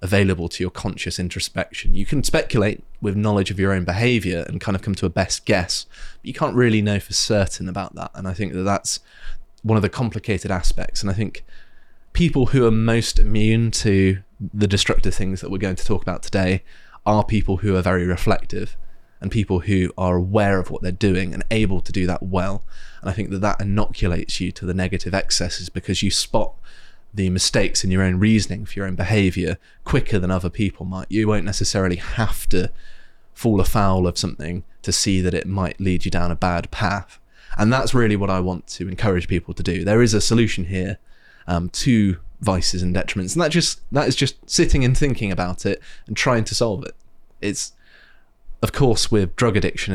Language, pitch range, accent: English, 90-105 Hz, British